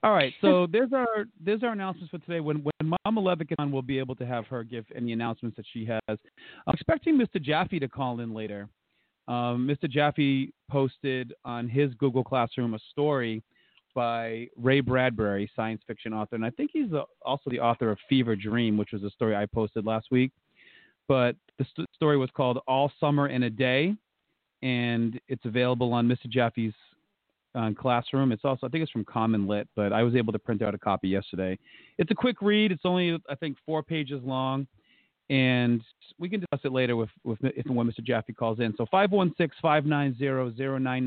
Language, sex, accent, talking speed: English, male, American, 205 wpm